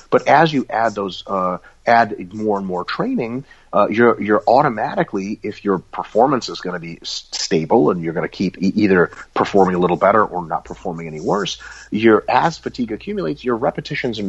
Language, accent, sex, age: English, American, male, 30-49